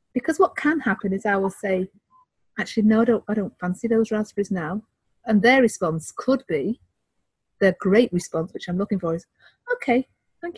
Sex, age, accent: female, 40-59, British